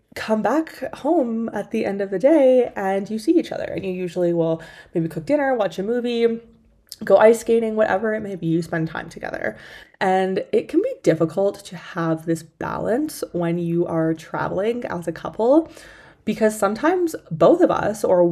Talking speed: 185 wpm